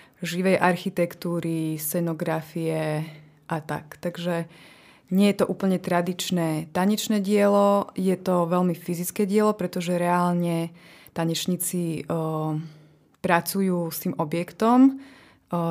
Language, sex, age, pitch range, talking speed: Slovak, female, 20-39, 160-180 Hz, 105 wpm